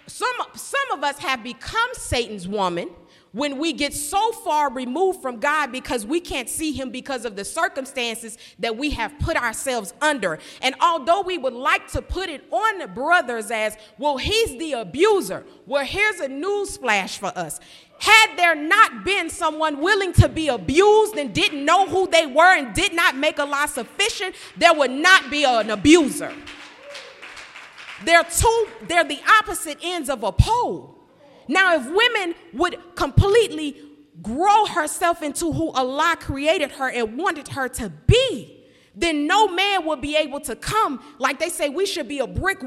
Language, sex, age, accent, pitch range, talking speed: English, female, 40-59, American, 270-375 Hz, 175 wpm